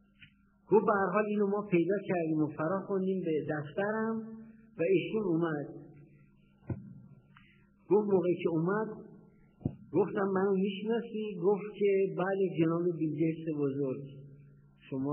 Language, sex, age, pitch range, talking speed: Persian, male, 50-69, 125-190 Hz, 105 wpm